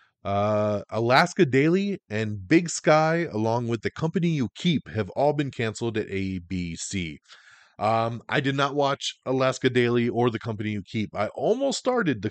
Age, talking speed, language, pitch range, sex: 30-49, 165 wpm, English, 95-135 Hz, male